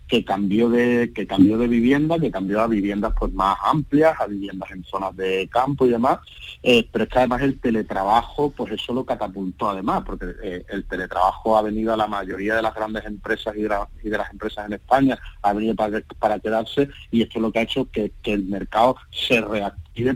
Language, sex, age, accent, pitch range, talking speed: Spanish, male, 40-59, Spanish, 100-120 Hz, 220 wpm